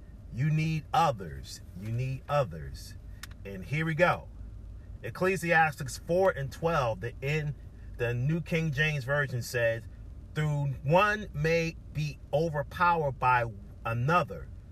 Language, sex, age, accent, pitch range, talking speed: English, male, 40-59, American, 100-155 Hz, 120 wpm